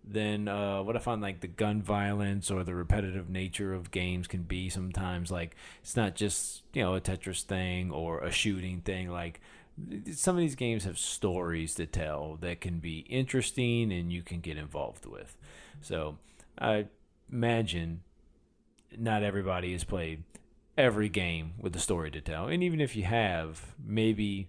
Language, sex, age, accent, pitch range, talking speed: English, male, 30-49, American, 85-105 Hz, 170 wpm